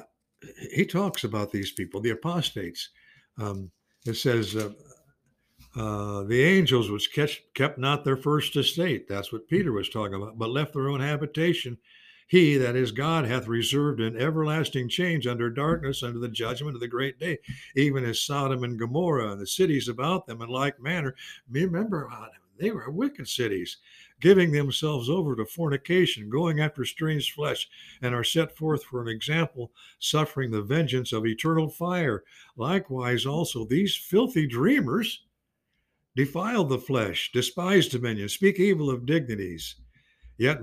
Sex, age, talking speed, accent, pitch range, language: male, 60-79, 155 wpm, American, 120-160 Hz, English